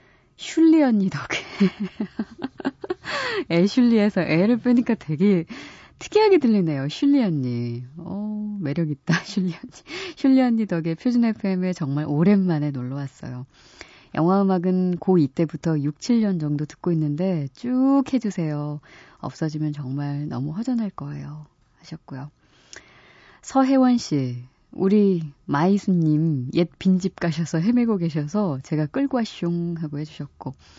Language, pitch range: Korean, 150-220 Hz